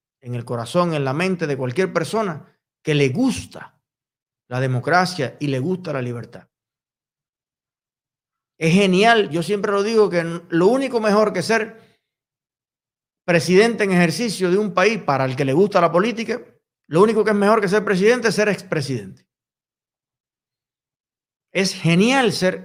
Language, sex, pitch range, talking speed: Spanish, male, 150-200 Hz, 155 wpm